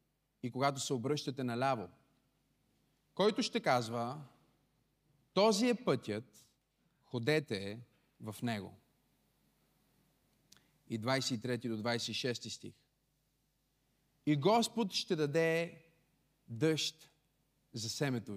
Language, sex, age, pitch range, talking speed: Bulgarian, male, 40-59, 130-180 Hz, 85 wpm